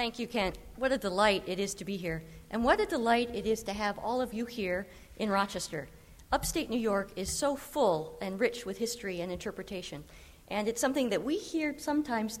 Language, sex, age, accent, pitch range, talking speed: English, female, 50-69, American, 180-240 Hz, 215 wpm